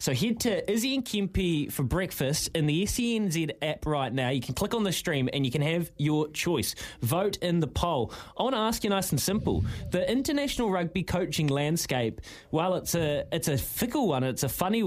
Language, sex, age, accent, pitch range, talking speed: English, male, 20-39, Australian, 135-180 Hz, 215 wpm